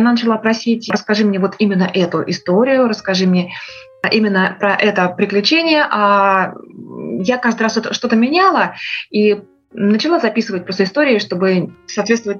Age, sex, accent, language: 20-39, female, native, Russian